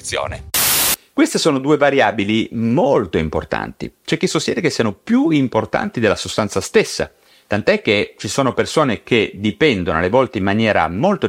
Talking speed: 150 wpm